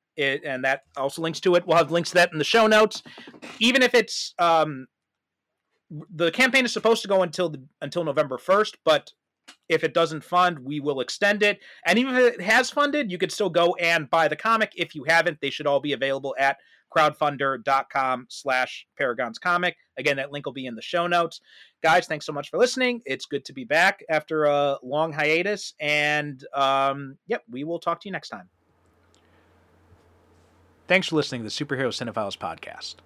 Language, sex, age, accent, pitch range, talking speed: English, male, 30-49, American, 125-170 Hz, 200 wpm